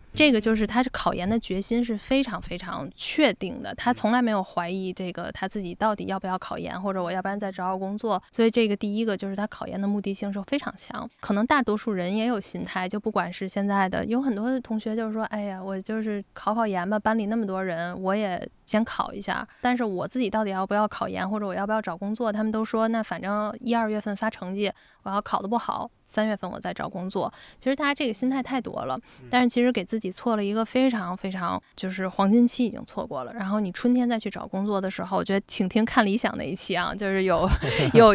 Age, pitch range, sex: 10-29, 195-235 Hz, female